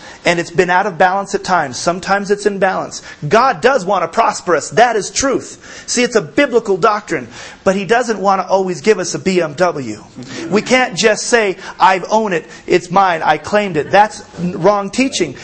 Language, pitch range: English, 175-225 Hz